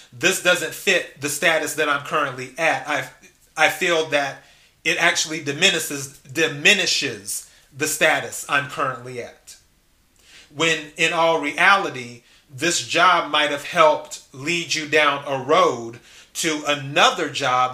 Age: 30-49